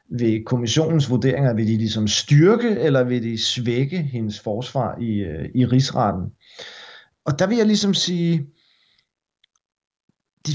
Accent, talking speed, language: native, 135 wpm, Danish